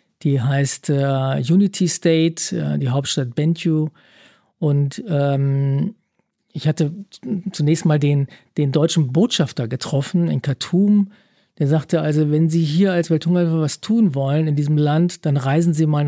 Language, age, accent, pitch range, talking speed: German, 40-59, German, 145-170 Hz, 150 wpm